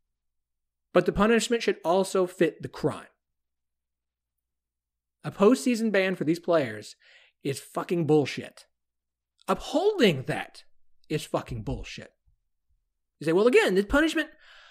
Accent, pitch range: American, 135-195 Hz